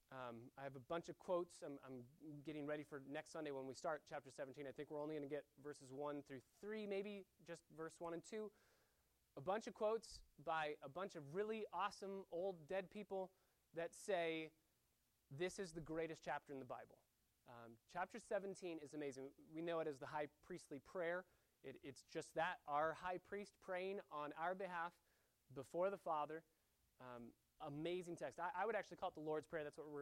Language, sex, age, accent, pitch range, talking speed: English, male, 30-49, American, 140-185 Hz, 205 wpm